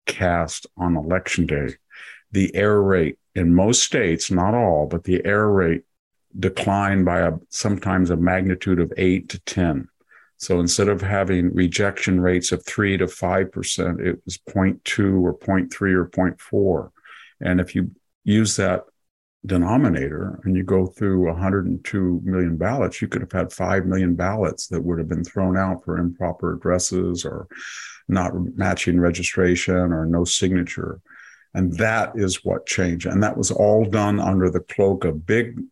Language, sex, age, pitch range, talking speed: English, male, 50-69, 90-95 Hz, 155 wpm